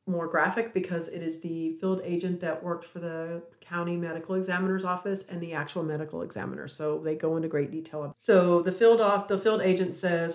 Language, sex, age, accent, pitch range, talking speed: English, female, 40-59, American, 165-185 Hz, 205 wpm